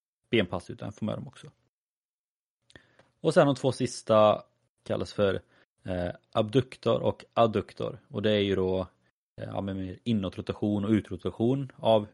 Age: 20-39